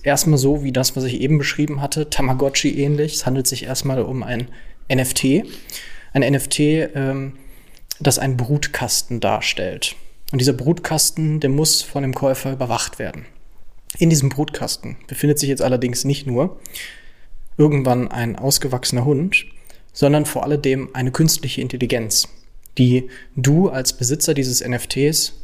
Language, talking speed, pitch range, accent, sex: German, 135 wpm, 125-150 Hz, German, male